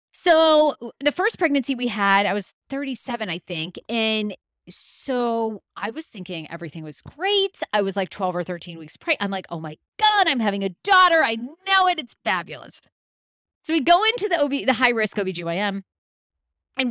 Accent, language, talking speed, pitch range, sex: American, English, 180 wpm, 175-240 Hz, female